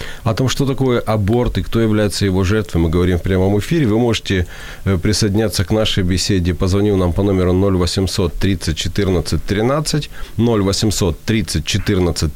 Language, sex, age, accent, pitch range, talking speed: Ukrainian, male, 40-59, native, 80-110 Hz, 145 wpm